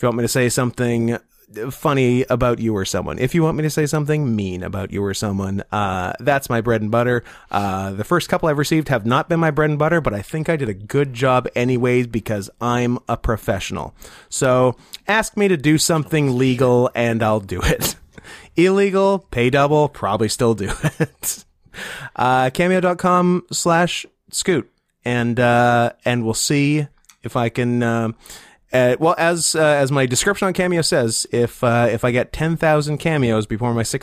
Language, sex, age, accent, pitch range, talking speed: English, male, 30-49, American, 110-155 Hz, 185 wpm